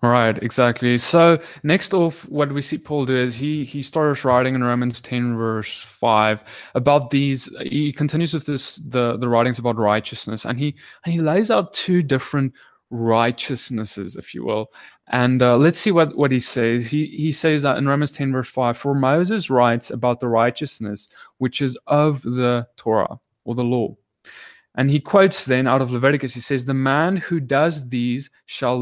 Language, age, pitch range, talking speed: English, 20-39, 125-160 Hz, 185 wpm